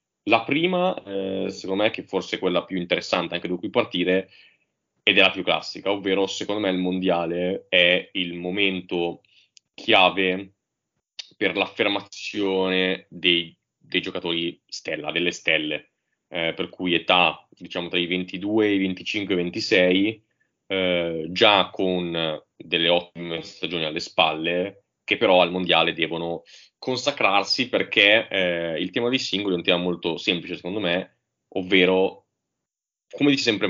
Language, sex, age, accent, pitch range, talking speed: Italian, male, 20-39, native, 85-100 Hz, 140 wpm